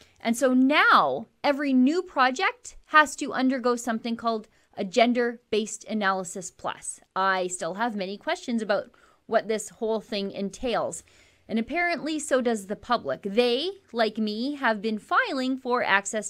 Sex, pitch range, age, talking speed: female, 215-265 Hz, 30-49, 145 wpm